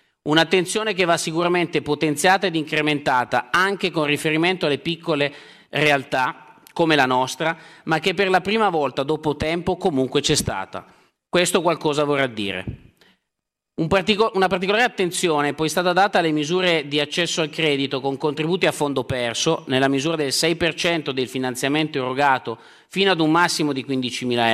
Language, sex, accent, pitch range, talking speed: Italian, male, native, 135-170 Hz, 150 wpm